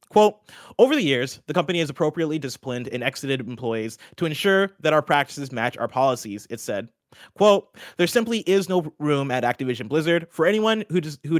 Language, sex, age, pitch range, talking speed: English, male, 30-49, 125-165 Hz, 180 wpm